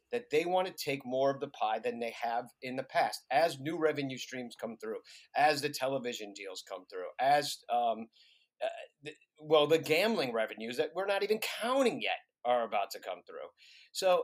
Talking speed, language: 195 wpm, English